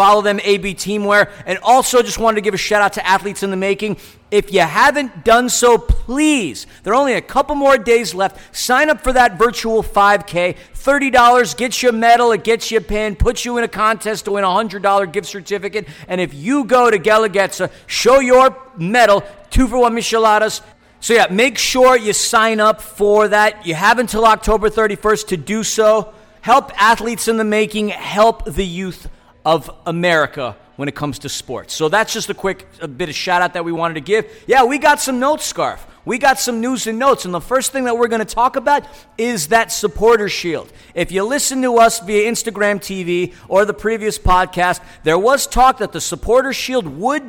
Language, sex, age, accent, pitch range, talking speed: English, male, 50-69, American, 195-240 Hz, 205 wpm